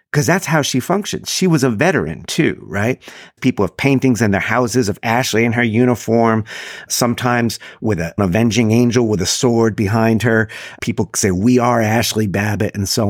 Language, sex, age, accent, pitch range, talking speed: English, male, 50-69, American, 100-135 Hz, 185 wpm